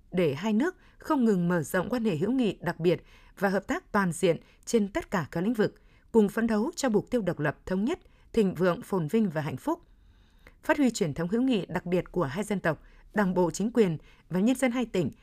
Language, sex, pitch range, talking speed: Vietnamese, female, 180-235 Hz, 245 wpm